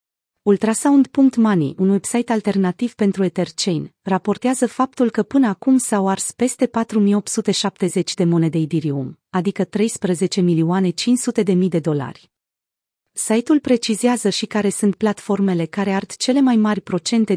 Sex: female